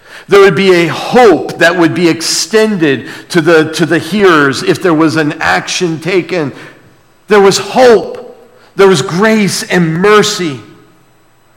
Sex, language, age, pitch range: male, English, 50-69, 125-200 Hz